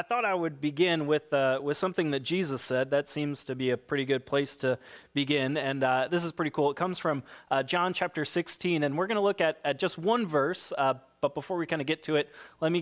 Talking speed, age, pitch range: 260 wpm, 30-49, 130-165 Hz